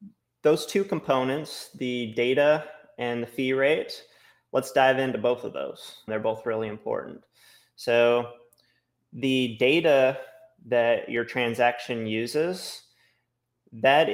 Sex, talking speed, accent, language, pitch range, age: male, 115 wpm, American, English, 115-135 Hz, 20-39